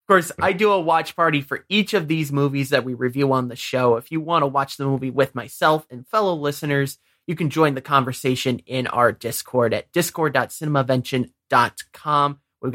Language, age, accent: English, 30-49, American